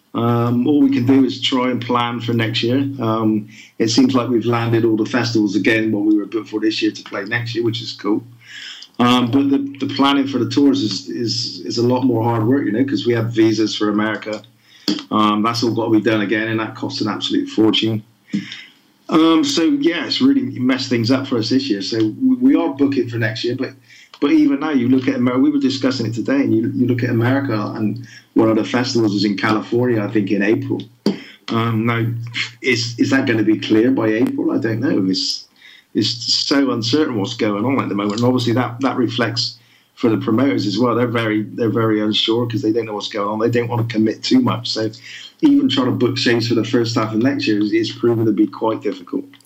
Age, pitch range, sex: 30-49, 110-135 Hz, male